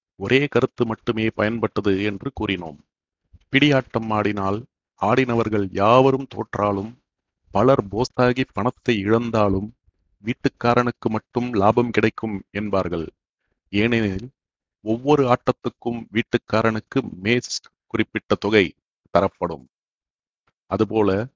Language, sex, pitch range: Tamil, male, 100-120 Hz